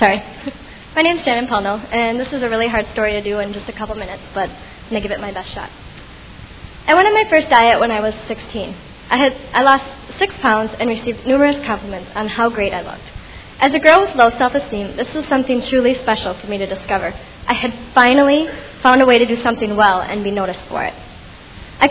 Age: 20-39